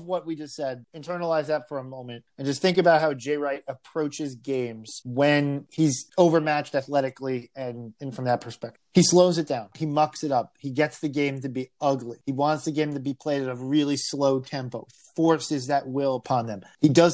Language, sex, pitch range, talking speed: English, male, 135-160 Hz, 215 wpm